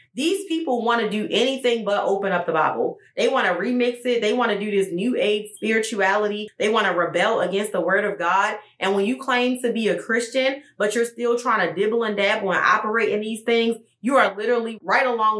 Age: 20-39